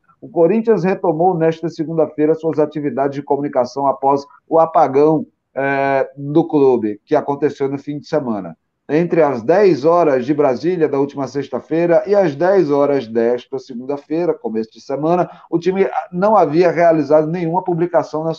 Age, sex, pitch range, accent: 30-49, male, 135-165 Hz, Brazilian